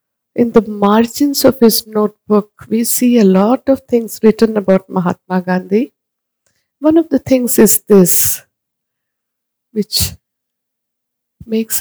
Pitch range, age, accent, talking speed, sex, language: 200-235 Hz, 60-79, Indian, 120 wpm, female, English